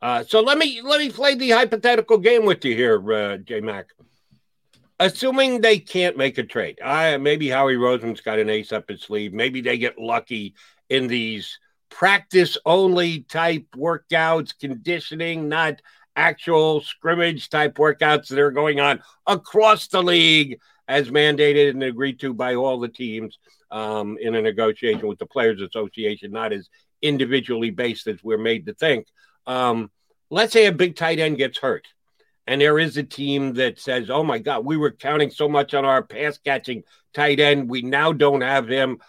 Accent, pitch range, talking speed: American, 125-165 Hz, 180 wpm